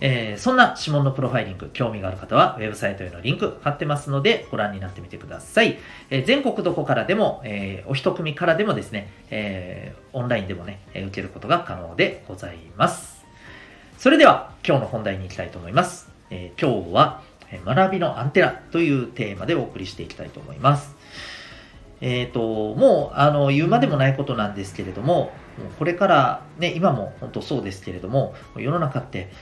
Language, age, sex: Japanese, 40-59, male